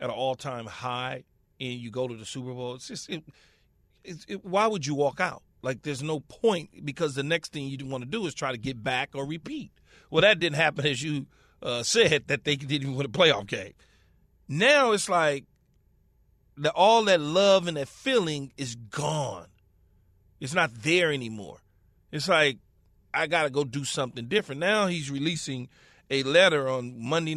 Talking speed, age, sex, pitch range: 185 wpm, 40-59, male, 135-185 Hz